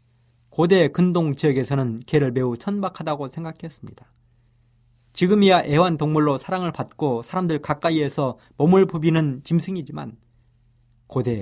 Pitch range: 120-170 Hz